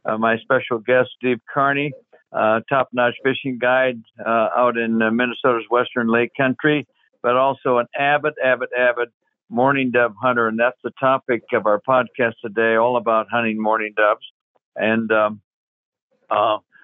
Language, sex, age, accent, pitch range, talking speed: English, male, 60-79, American, 110-130 Hz, 150 wpm